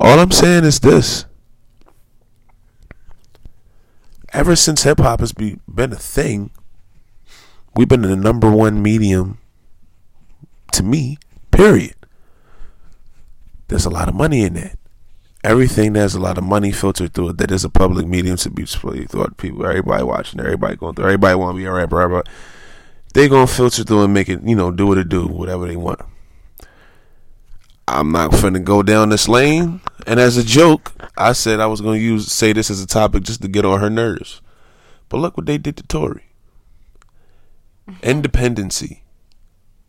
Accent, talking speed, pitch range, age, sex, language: American, 175 wpm, 95-115 Hz, 20-39, male, English